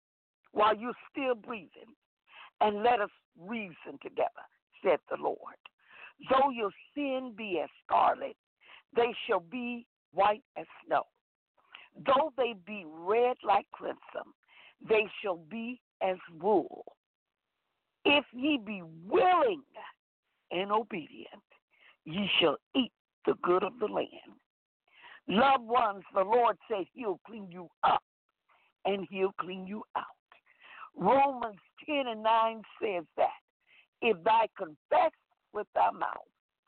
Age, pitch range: 60-79, 195-260 Hz